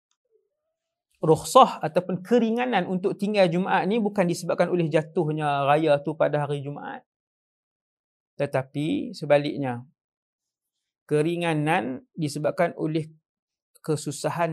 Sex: male